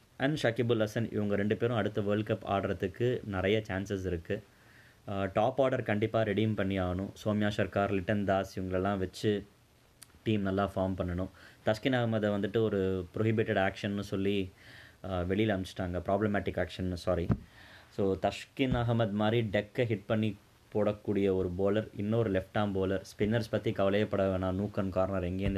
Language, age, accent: Tamil, 20-39, native